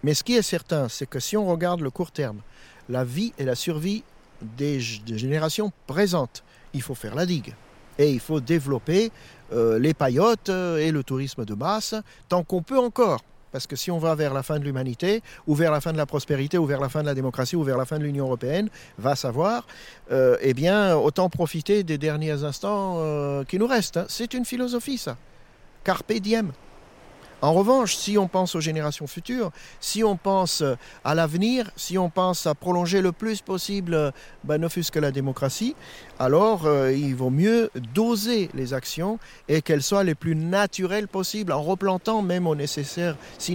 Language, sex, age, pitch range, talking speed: French, male, 50-69, 140-190 Hz, 200 wpm